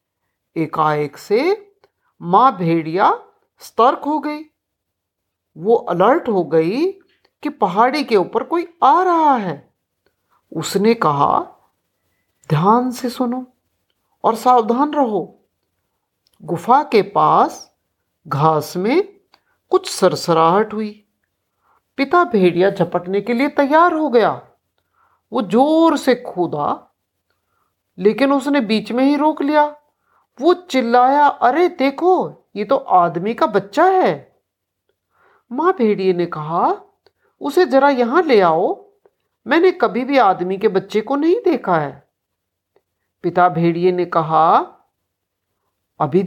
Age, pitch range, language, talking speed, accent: 50-69, 175-295 Hz, Hindi, 115 wpm, native